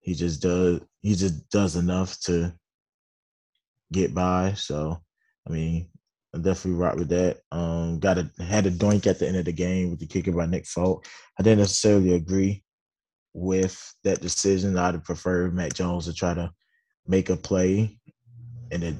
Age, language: 20-39, English